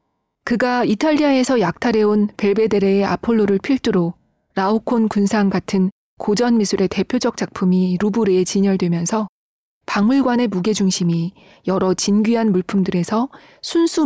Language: Korean